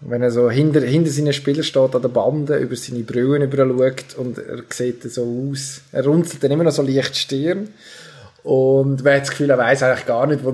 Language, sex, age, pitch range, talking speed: German, male, 20-39, 120-145 Hz, 220 wpm